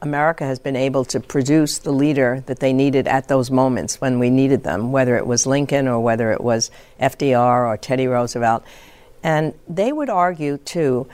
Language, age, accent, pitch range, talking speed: English, 60-79, American, 130-155 Hz, 190 wpm